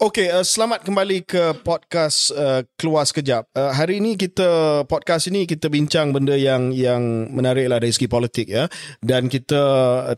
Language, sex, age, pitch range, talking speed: Malay, male, 20-39, 115-135 Hz, 165 wpm